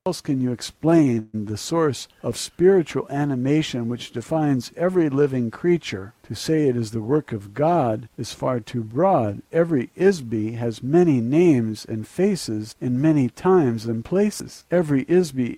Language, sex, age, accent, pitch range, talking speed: English, male, 60-79, American, 120-165 Hz, 155 wpm